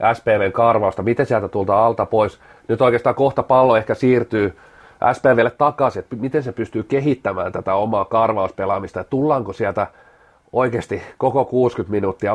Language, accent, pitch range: Finnish, native, 105-125 Hz